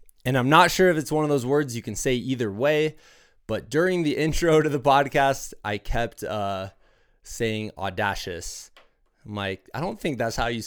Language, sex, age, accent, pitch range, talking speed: English, male, 20-39, American, 95-120 Hz, 195 wpm